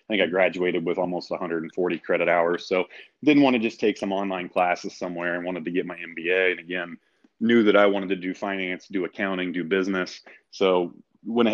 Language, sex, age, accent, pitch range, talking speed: English, male, 30-49, American, 90-100 Hz, 210 wpm